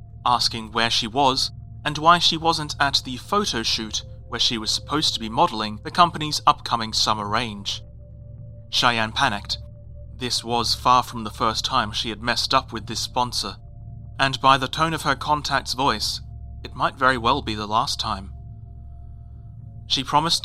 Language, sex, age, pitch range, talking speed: English, male, 30-49, 110-145 Hz, 170 wpm